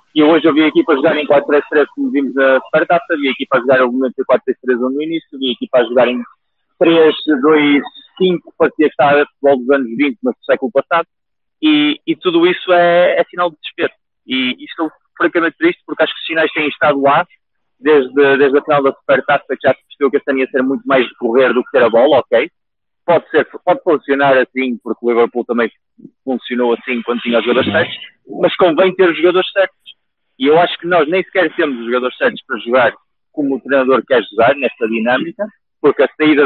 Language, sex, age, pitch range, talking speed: Portuguese, male, 20-39, 130-170 Hz, 210 wpm